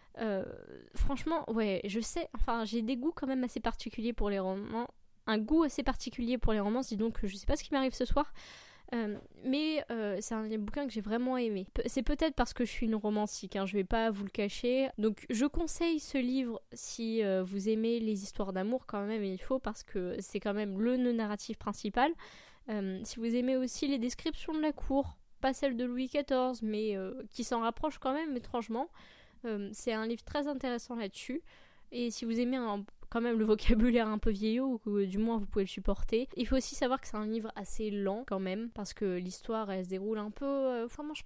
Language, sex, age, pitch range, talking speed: French, female, 10-29, 210-260 Hz, 230 wpm